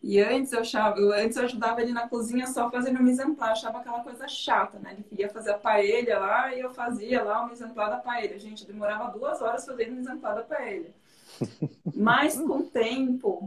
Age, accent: 20-39, Brazilian